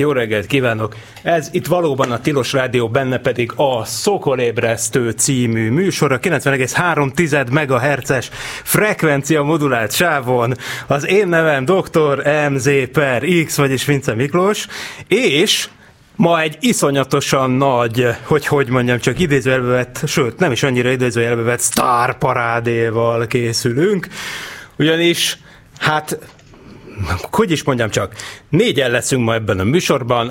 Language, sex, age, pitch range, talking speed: Hungarian, male, 30-49, 125-155 Hz, 125 wpm